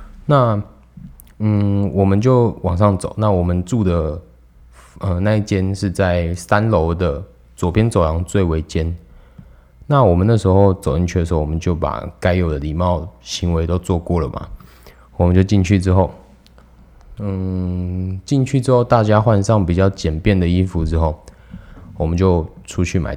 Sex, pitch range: male, 80-100 Hz